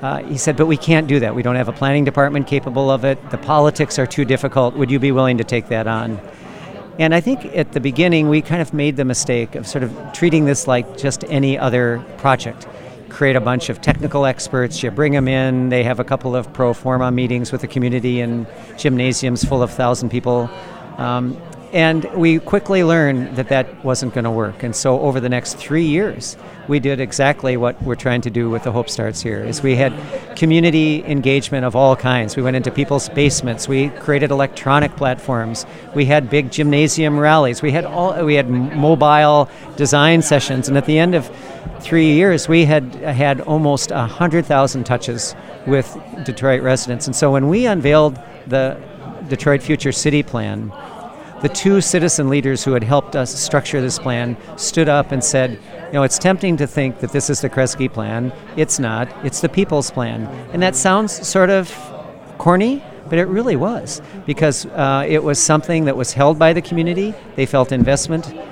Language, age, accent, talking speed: English, 50-69, American, 195 wpm